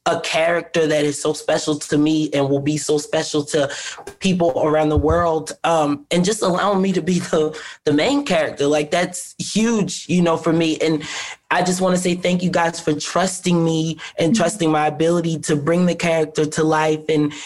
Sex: male